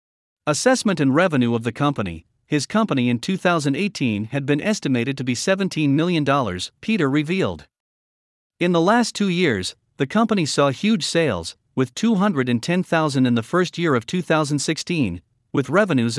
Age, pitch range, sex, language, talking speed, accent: 50-69, 125-185 Hz, male, English, 145 wpm, American